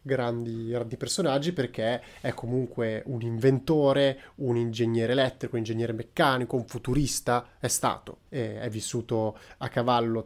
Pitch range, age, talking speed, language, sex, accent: 115-135 Hz, 30-49, 135 wpm, Italian, male, native